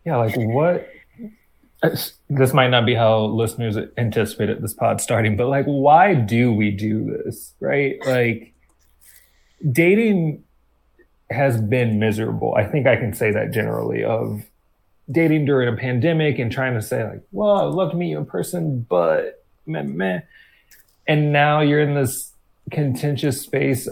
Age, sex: 30-49, male